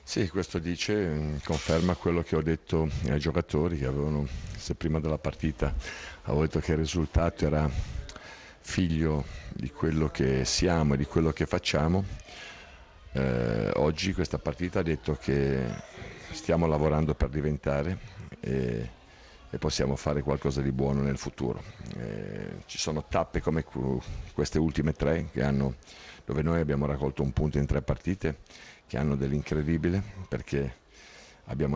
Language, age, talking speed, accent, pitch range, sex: Italian, 50-69, 145 wpm, native, 70-80 Hz, male